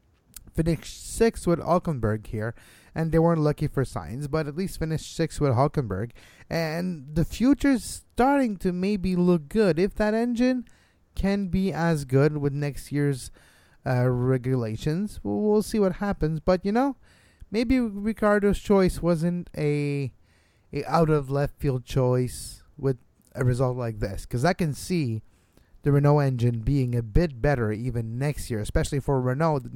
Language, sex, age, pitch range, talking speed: English, male, 20-39, 120-175 Hz, 150 wpm